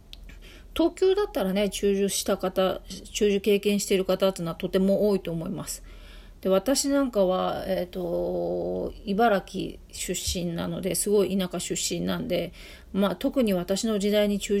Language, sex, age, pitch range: Japanese, female, 40-59, 175-210 Hz